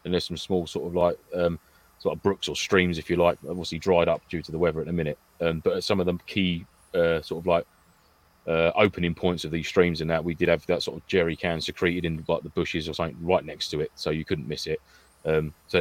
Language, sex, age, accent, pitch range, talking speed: English, male, 30-49, British, 80-90 Hz, 265 wpm